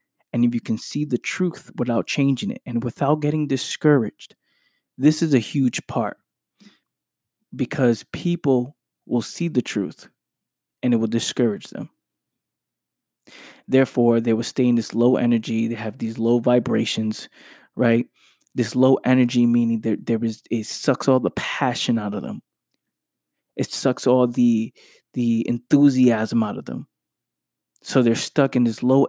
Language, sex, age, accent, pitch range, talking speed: English, male, 20-39, American, 115-130 Hz, 150 wpm